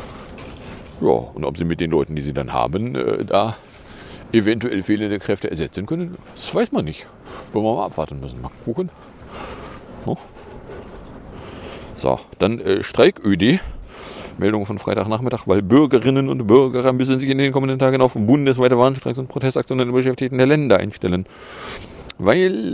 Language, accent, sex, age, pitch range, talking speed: English, German, male, 40-59, 105-135 Hz, 160 wpm